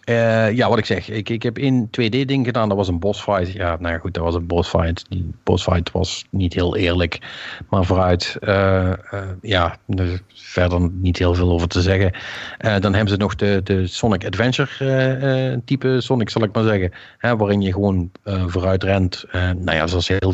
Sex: male